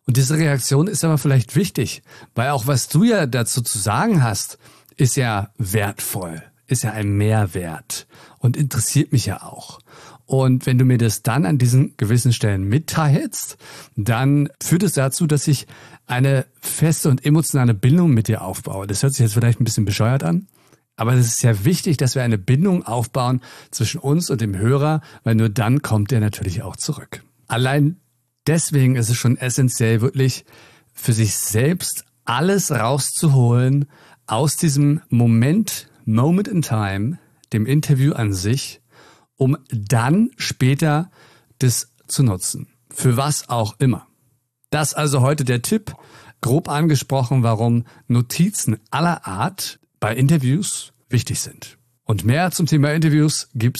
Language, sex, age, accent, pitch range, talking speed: German, male, 50-69, German, 115-145 Hz, 155 wpm